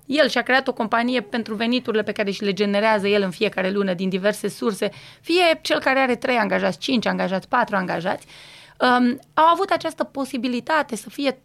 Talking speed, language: 190 wpm, Romanian